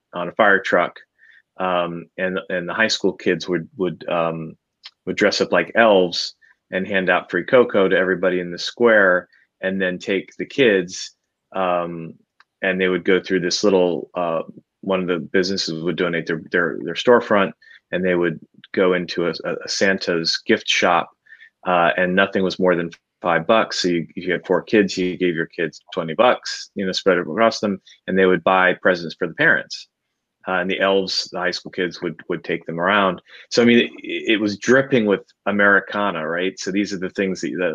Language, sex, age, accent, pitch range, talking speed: English, male, 30-49, American, 85-95 Hz, 200 wpm